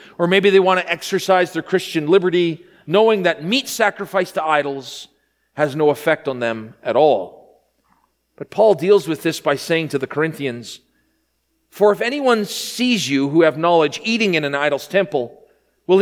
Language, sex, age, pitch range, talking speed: English, male, 40-59, 155-215 Hz, 170 wpm